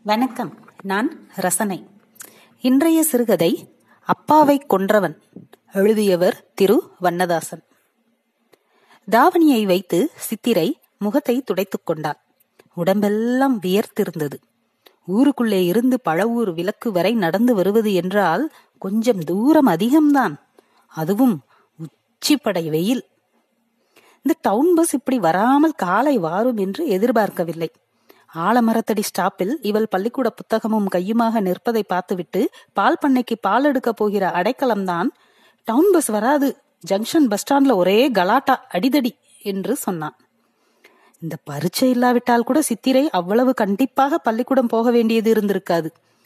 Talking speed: 100 wpm